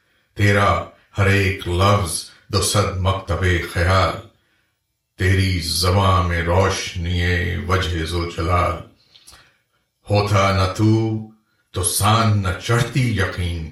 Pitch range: 90-110 Hz